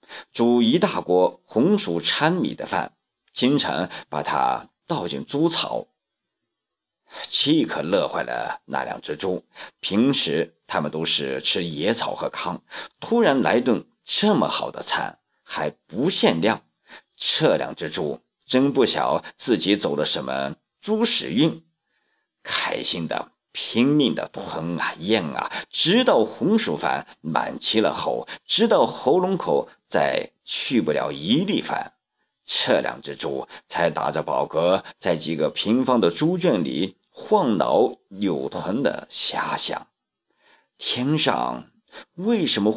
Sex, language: male, Chinese